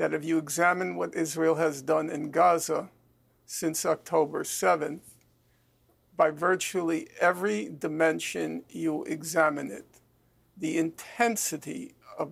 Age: 50-69